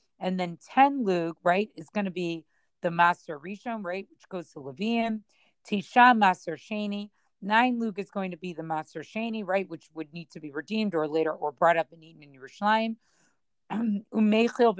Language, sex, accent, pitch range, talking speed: English, female, American, 170-220 Hz, 185 wpm